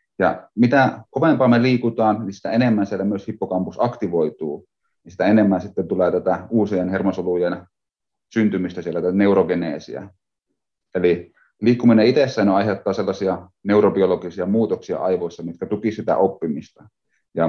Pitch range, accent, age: 95-110 Hz, native, 30-49